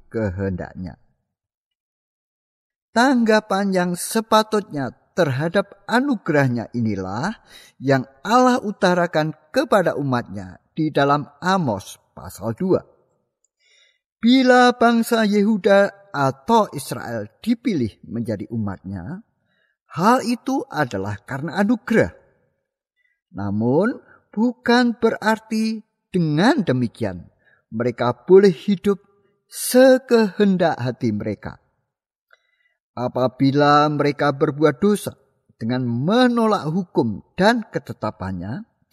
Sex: male